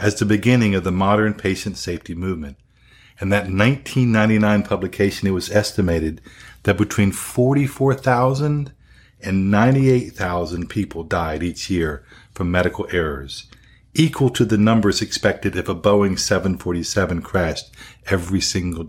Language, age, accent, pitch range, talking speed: English, 40-59, American, 95-120 Hz, 125 wpm